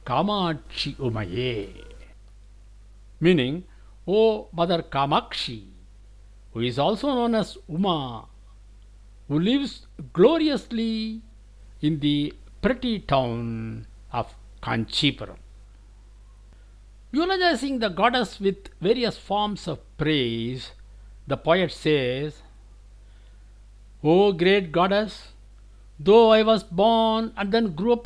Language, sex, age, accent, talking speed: English, male, 60-79, Indian, 90 wpm